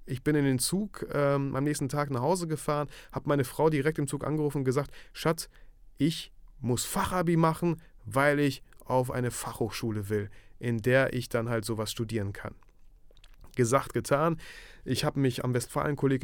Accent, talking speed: German, 175 wpm